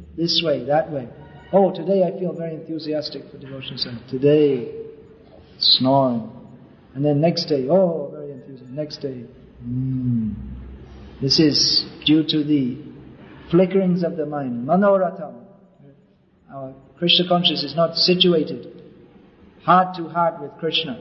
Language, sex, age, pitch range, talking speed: English, male, 50-69, 145-175 Hz, 130 wpm